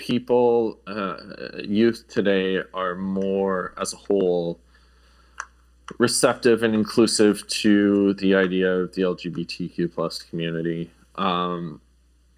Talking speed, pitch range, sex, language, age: 100 wpm, 85-100 Hz, male, English, 30-49